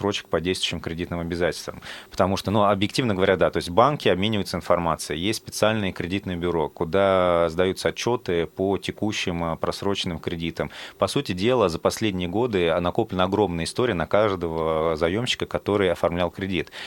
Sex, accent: male, native